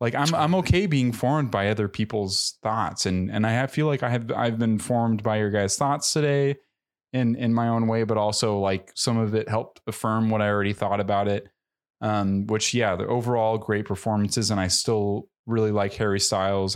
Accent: American